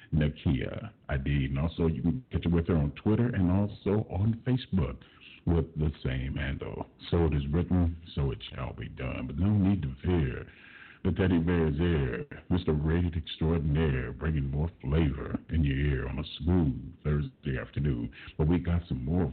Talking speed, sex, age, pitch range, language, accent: 175 wpm, male, 50-69, 70-90 Hz, English, American